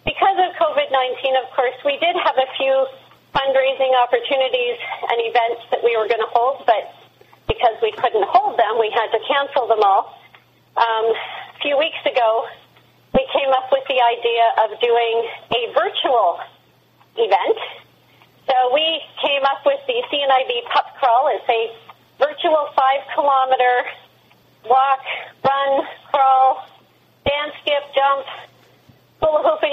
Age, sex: 40-59, female